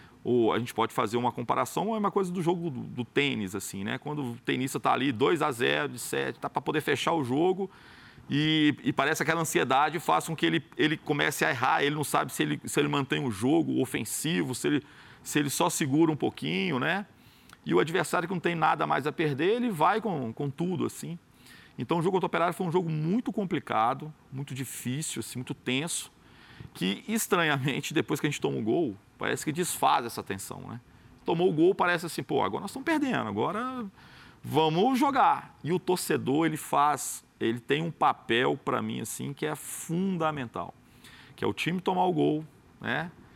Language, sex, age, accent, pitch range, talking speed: Portuguese, male, 40-59, Brazilian, 130-175 Hz, 205 wpm